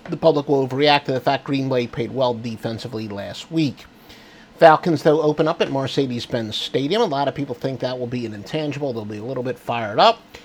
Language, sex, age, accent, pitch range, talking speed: English, male, 50-69, American, 125-175 Hz, 220 wpm